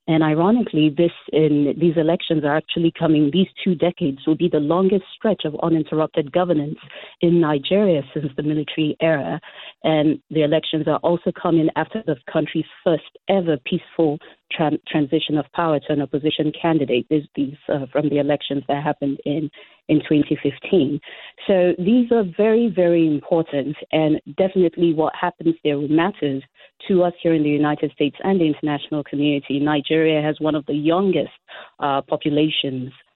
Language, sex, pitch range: English, female, 145-170 Hz